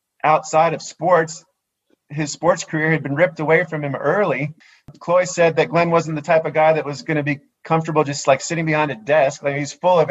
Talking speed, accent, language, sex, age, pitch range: 225 wpm, American, English, male, 40-59, 145-170 Hz